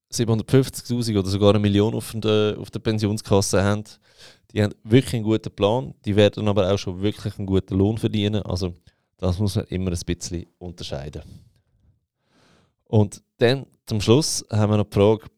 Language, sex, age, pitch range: German, male, 20-39, 95-115 Hz